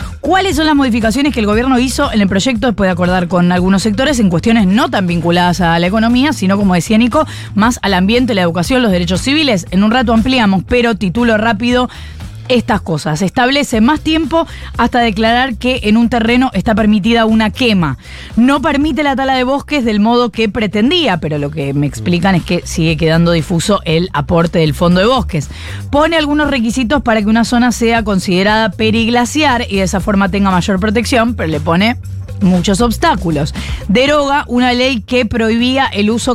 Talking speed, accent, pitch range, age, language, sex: 190 wpm, Argentinian, 180-240 Hz, 20-39, Spanish, female